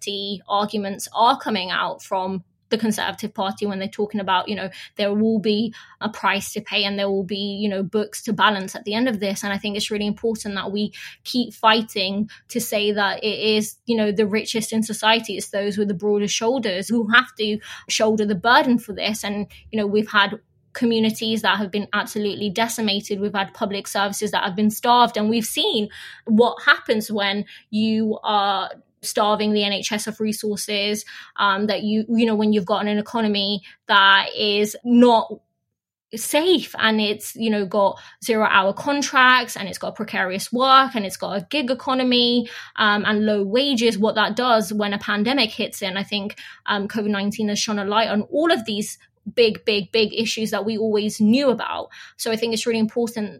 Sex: female